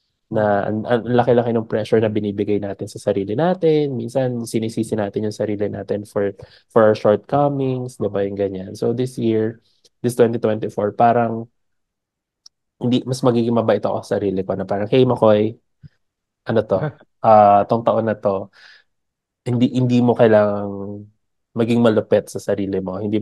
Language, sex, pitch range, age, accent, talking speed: English, male, 100-120 Hz, 20-39, Filipino, 160 wpm